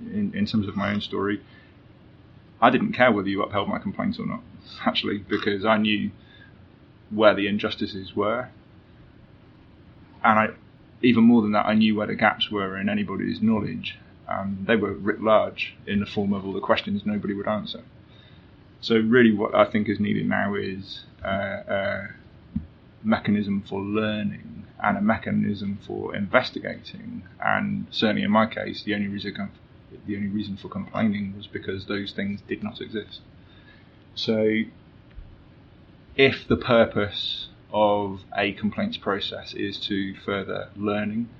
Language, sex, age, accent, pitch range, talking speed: English, male, 20-39, British, 100-115 Hz, 155 wpm